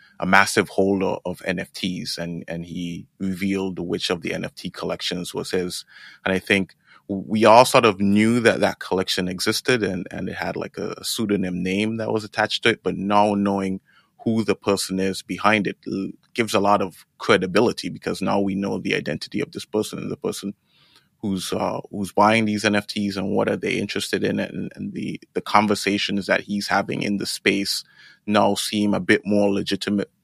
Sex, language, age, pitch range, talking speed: male, English, 20-39, 95-105 Hz, 195 wpm